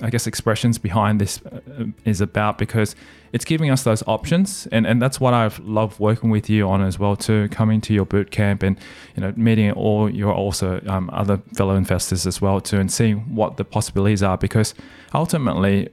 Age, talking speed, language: 20-39, 205 wpm, English